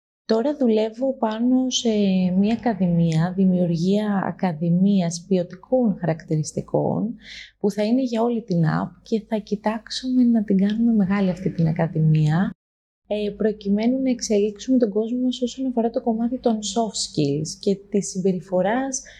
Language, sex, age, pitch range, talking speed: Greek, female, 20-39, 180-225 Hz, 130 wpm